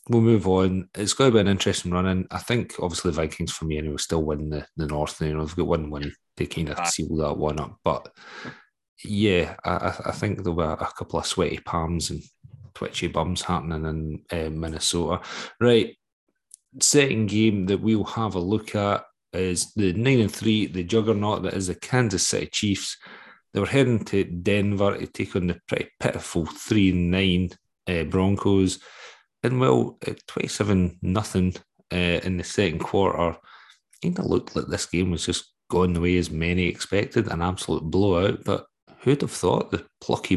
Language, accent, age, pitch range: English, British, 30-49, 85-105 Hz